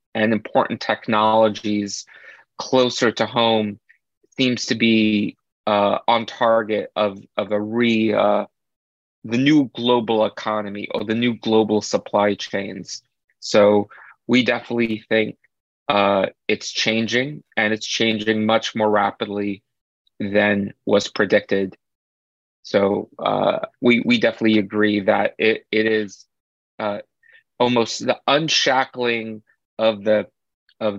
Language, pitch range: English, 105-120 Hz